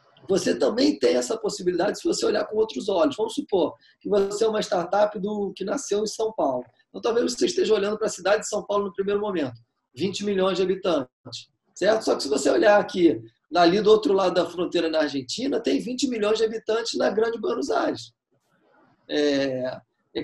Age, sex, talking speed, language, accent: 20-39, male, 195 wpm, Portuguese, Brazilian